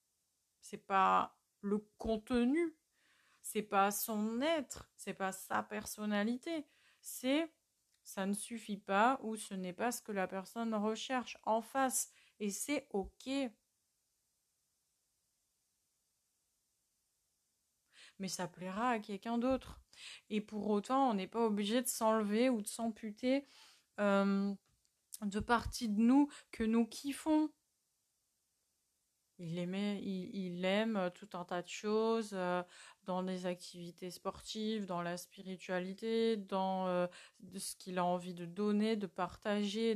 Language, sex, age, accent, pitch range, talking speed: French, female, 30-49, French, 185-230 Hz, 130 wpm